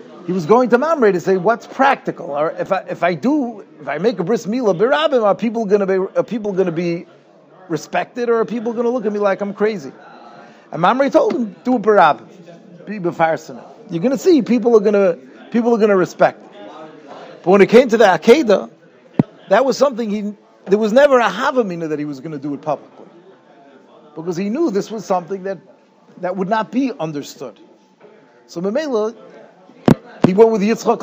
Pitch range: 175-235 Hz